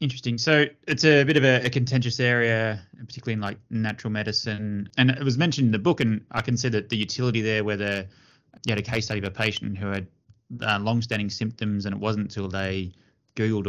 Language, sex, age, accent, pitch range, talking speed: English, male, 20-39, Australian, 100-125 Hz, 220 wpm